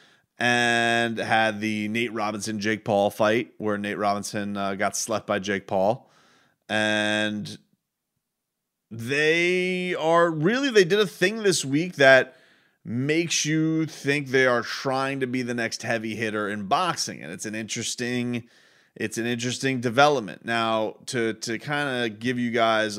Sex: male